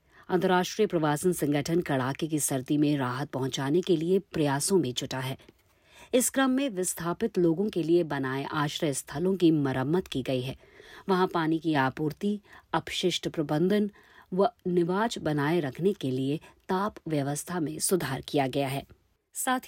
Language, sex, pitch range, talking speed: Hindi, female, 155-200 Hz, 150 wpm